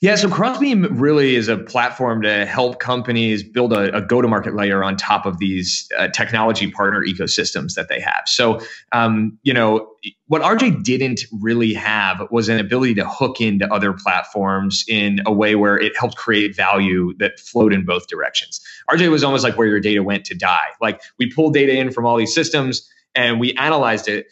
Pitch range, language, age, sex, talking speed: 105-135 Hz, English, 20-39, male, 195 wpm